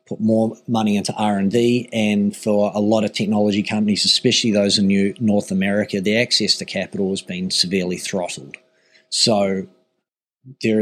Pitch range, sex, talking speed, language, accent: 95-120 Hz, male, 165 wpm, English, Australian